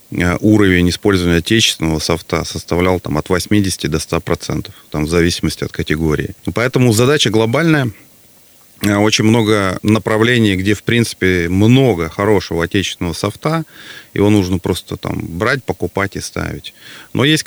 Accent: native